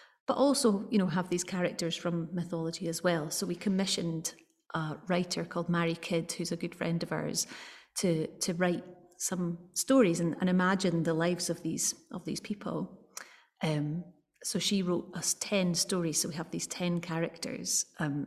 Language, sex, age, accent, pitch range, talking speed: English, female, 30-49, British, 165-190 Hz, 175 wpm